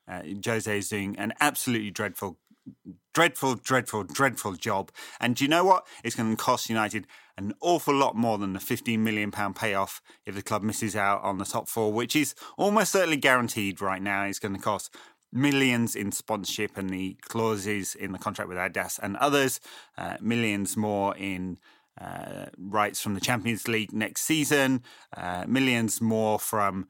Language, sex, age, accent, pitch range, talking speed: English, male, 30-49, British, 100-125 Hz, 175 wpm